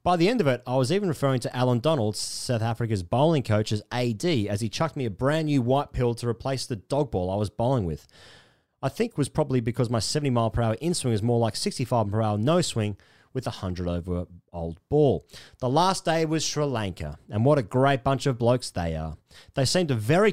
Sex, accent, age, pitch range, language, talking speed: male, Australian, 30-49, 110-140 Hz, English, 240 wpm